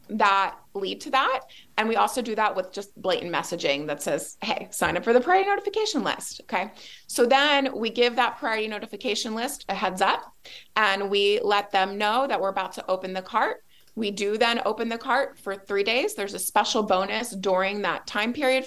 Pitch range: 195-240 Hz